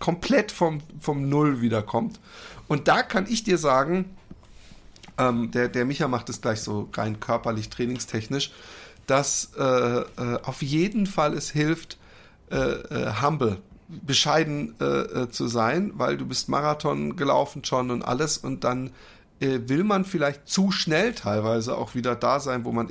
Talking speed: 160 wpm